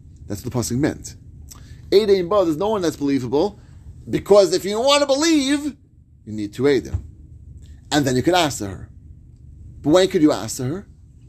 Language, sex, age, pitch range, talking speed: English, male, 30-49, 125-200 Hz, 185 wpm